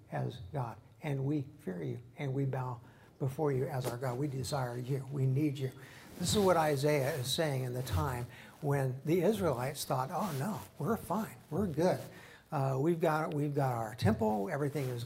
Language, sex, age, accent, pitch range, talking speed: English, male, 60-79, American, 130-150 Hz, 190 wpm